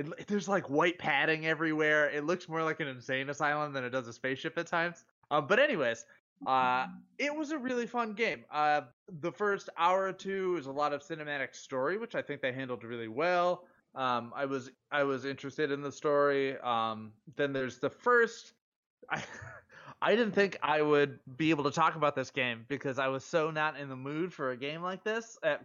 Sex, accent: male, American